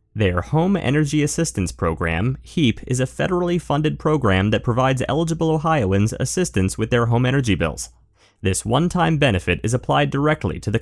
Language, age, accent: English, 30-49, American